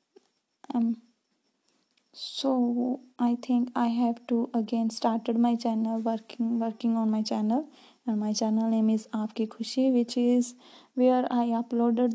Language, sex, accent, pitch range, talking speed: Hindi, female, native, 230-265 Hz, 140 wpm